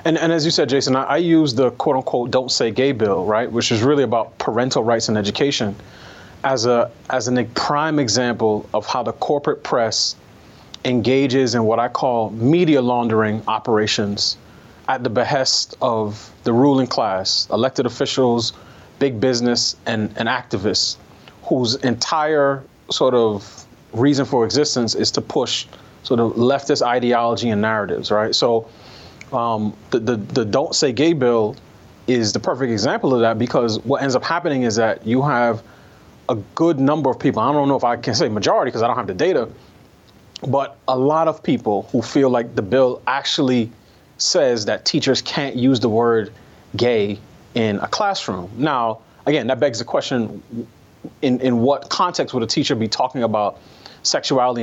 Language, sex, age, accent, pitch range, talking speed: English, male, 30-49, American, 110-135 Hz, 170 wpm